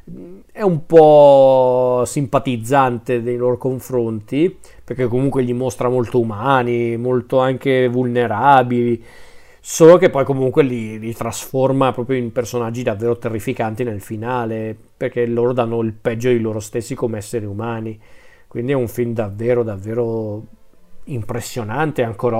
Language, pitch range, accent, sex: Italian, 120-140 Hz, native, male